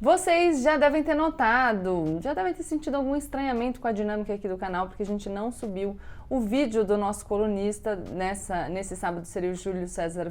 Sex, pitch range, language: female, 190-255 Hz, Portuguese